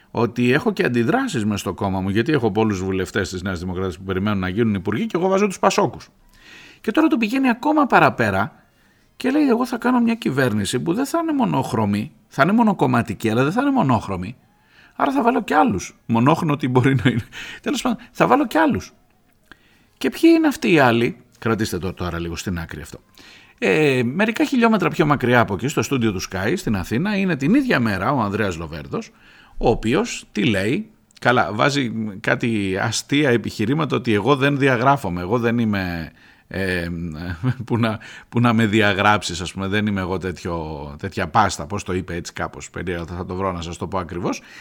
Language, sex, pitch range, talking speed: Greek, male, 95-150 Hz, 195 wpm